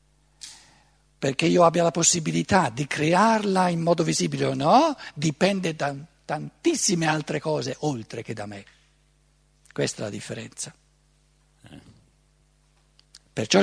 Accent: native